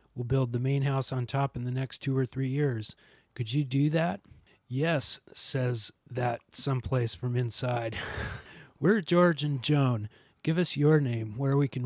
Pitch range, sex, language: 125-140 Hz, male, English